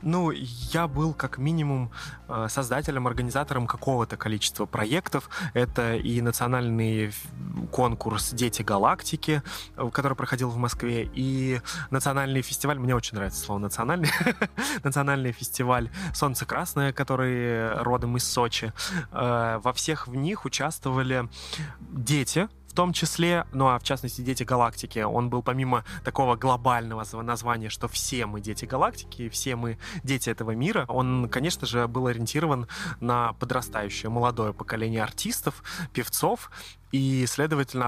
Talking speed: 125 wpm